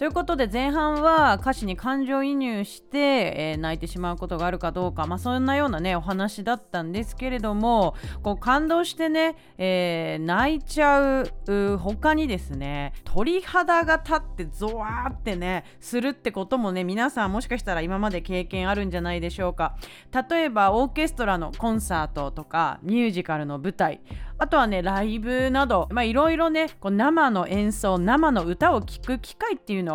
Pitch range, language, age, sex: 185-290 Hz, Japanese, 30-49, female